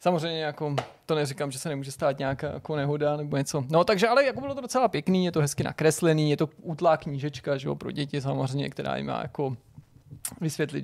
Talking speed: 215 wpm